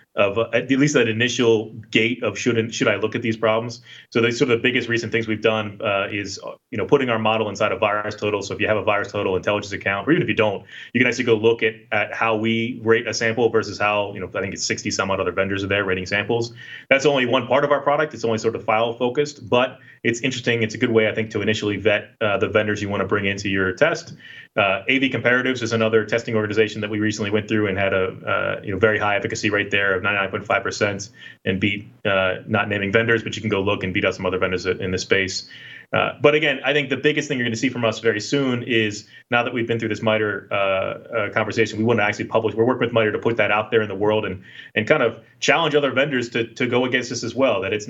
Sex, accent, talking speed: male, American, 270 wpm